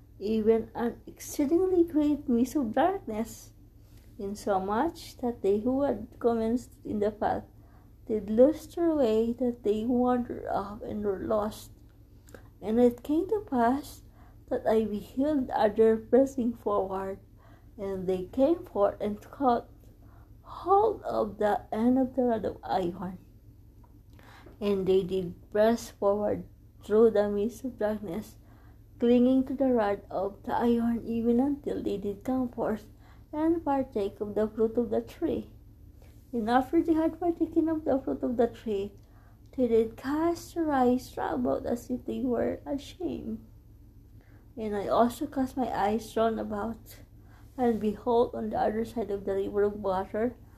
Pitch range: 190-255 Hz